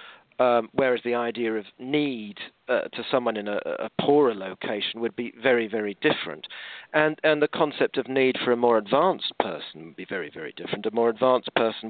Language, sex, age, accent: English, male, 50-69, British